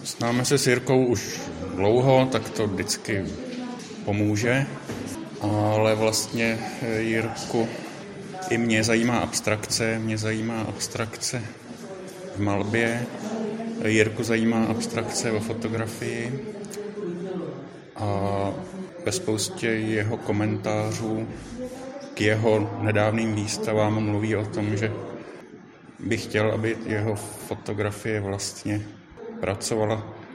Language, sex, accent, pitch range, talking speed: Czech, male, native, 105-115 Hz, 95 wpm